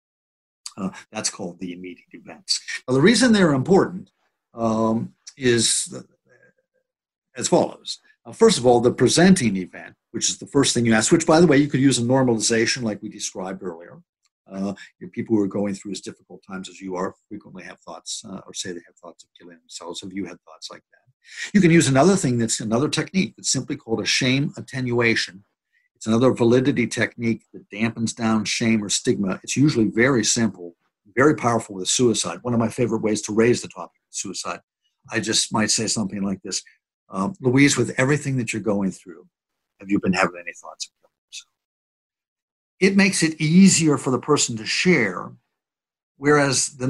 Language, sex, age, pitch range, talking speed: English, male, 60-79, 105-150 Hz, 190 wpm